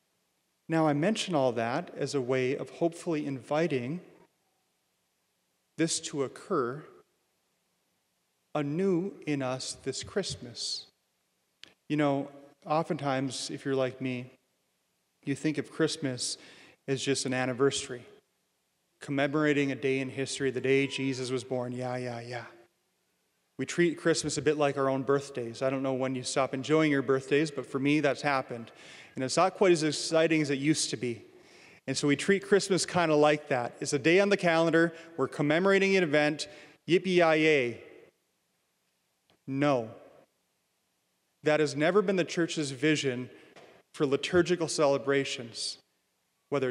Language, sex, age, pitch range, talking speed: English, male, 30-49, 130-165 Hz, 150 wpm